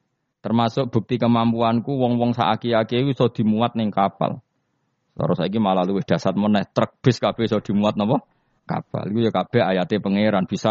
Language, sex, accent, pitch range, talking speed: Indonesian, male, native, 100-125 Hz, 145 wpm